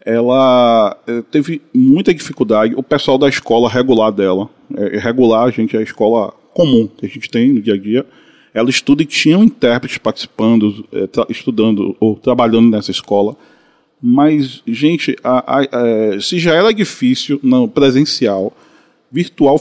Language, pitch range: Portuguese, 115-170 Hz